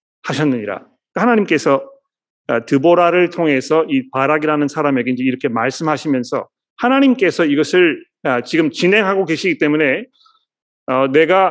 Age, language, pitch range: 40-59, Korean, 145-200 Hz